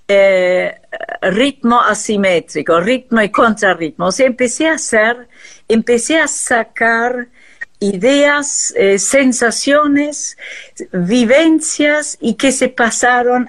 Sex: female